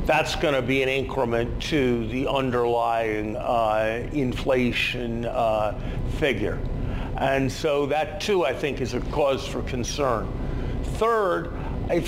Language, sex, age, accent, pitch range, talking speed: English, male, 50-69, American, 125-150 Hz, 130 wpm